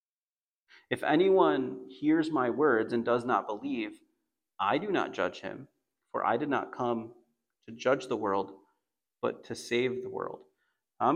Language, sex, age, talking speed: English, male, 30-49, 155 wpm